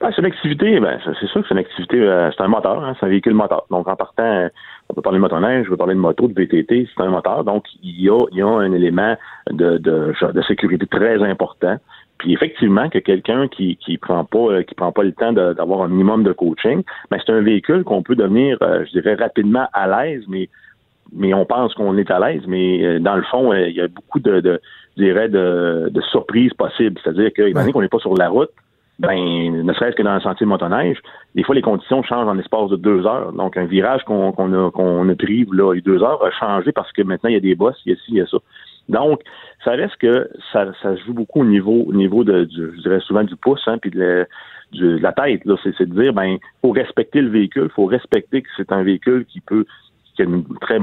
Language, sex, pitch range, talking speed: French, male, 90-110 Hz, 265 wpm